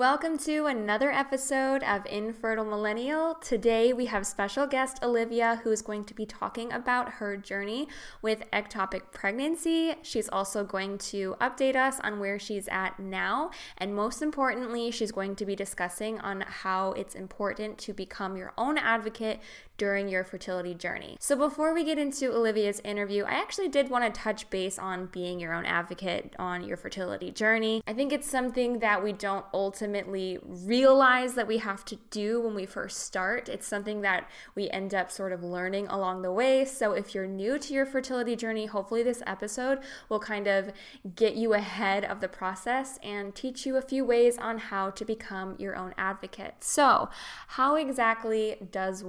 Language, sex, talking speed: English, female, 180 wpm